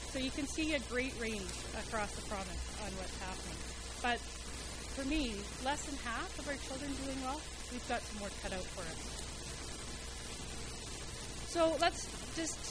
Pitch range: 210-260 Hz